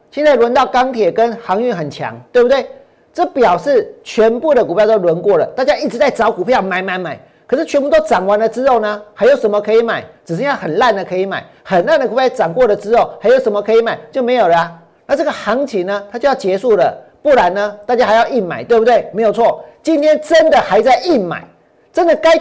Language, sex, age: Chinese, male, 50-69